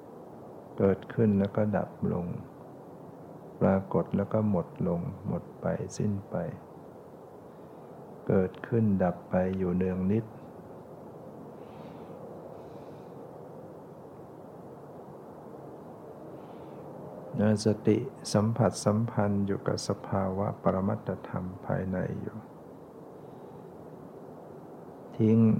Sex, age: male, 60-79